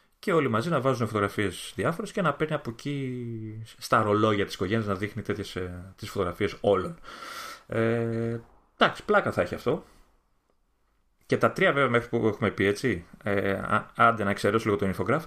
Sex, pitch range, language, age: male, 100-120 Hz, Greek, 30-49